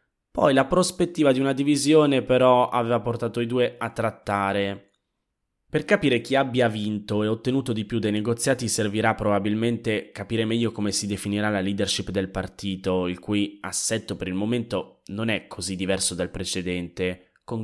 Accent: native